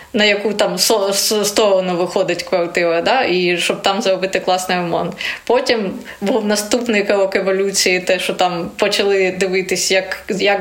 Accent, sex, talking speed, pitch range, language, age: native, female, 140 wpm, 185-220 Hz, Ukrainian, 20-39